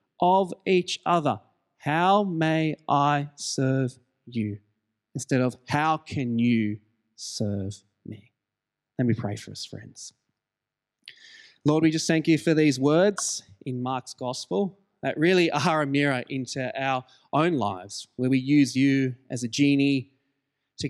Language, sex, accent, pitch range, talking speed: English, male, Australian, 120-145 Hz, 140 wpm